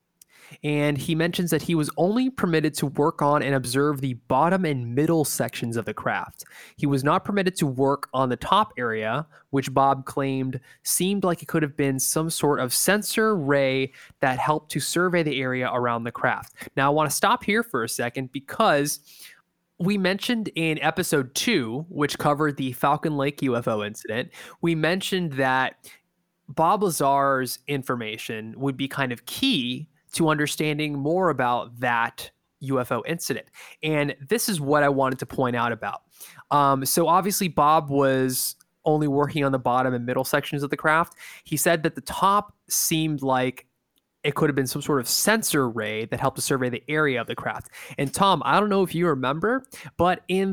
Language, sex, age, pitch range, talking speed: English, male, 20-39, 135-170 Hz, 185 wpm